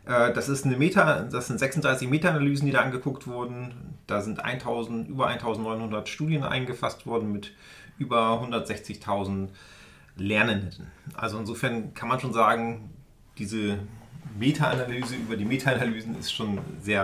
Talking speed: 135 wpm